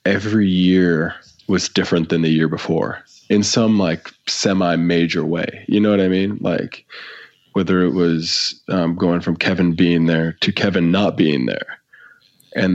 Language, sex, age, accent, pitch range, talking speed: English, male, 20-39, American, 85-95 Hz, 160 wpm